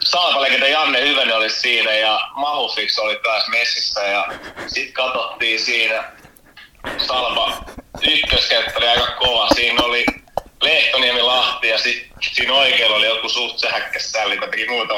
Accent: native